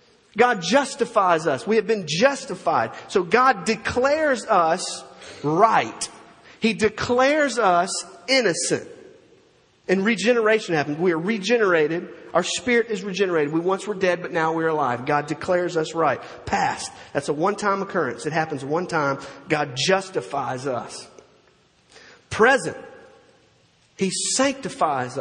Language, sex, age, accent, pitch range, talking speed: English, male, 40-59, American, 160-235 Hz, 130 wpm